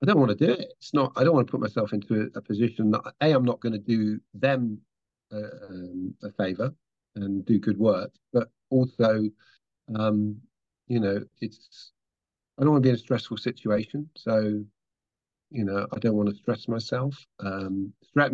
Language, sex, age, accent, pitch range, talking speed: English, male, 50-69, British, 105-135 Hz, 185 wpm